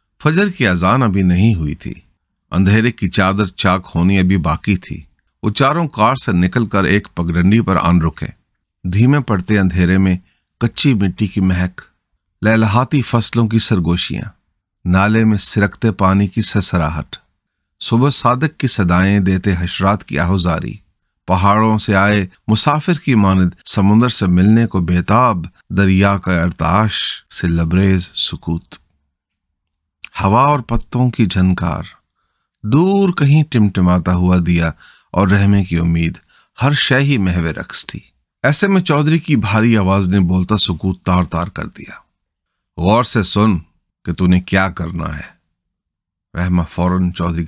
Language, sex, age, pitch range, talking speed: Urdu, male, 40-59, 85-110 Hz, 140 wpm